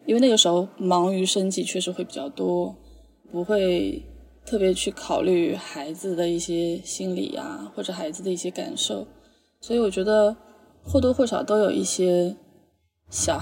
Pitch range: 180-220 Hz